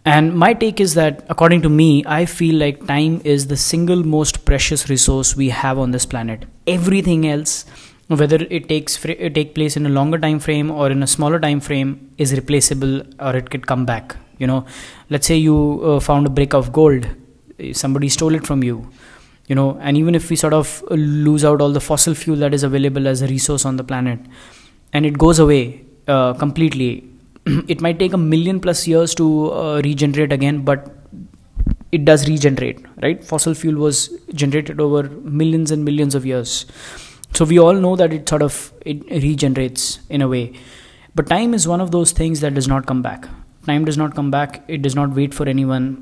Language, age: English, 20-39